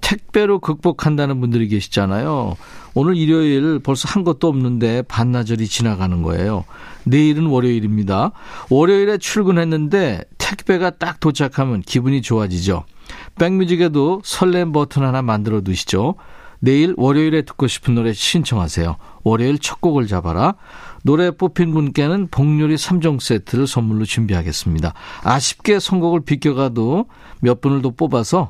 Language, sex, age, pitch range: Korean, male, 50-69, 115-165 Hz